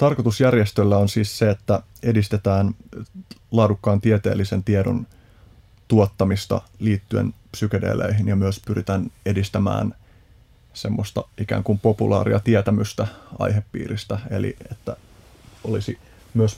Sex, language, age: male, Finnish, 30-49